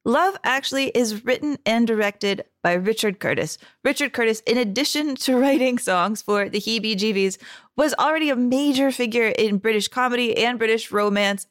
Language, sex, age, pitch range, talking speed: English, female, 30-49, 200-255 Hz, 160 wpm